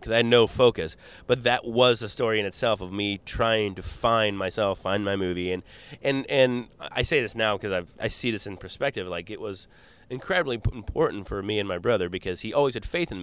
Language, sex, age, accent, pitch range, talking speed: English, male, 30-49, American, 90-115 Hz, 225 wpm